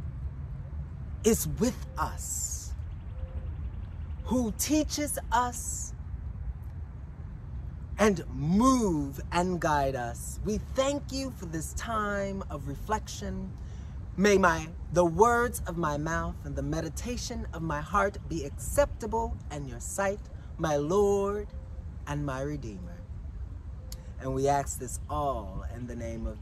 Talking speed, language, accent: 115 wpm, English, American